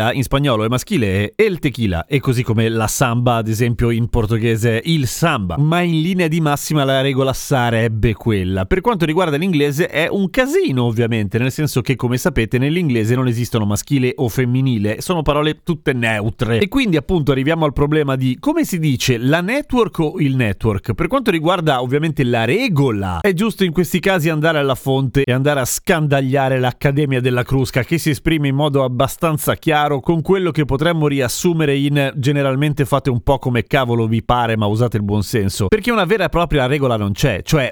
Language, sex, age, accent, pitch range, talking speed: Italian, male, 30-49, native, 120-155 Hz, 190 wpm